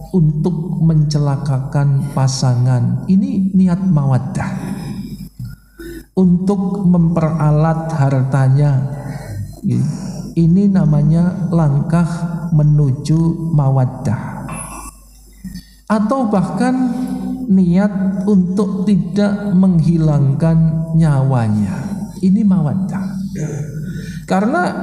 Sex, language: male, Indonesian